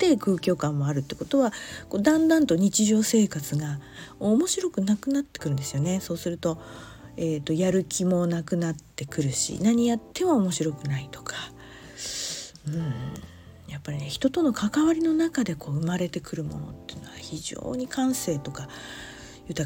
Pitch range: 150-225 Hz